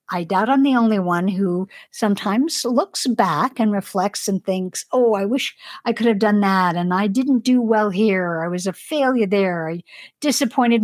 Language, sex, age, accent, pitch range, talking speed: English, female, 60-79, American, 190-235 Hz, 195 wpm